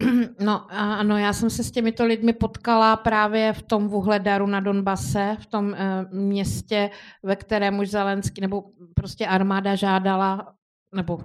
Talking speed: 145 wpm